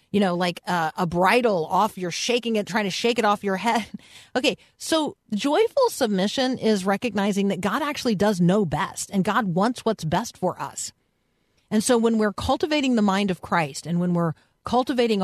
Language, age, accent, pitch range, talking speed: English, 50-69, American, 170-235 Hz, 195 wpm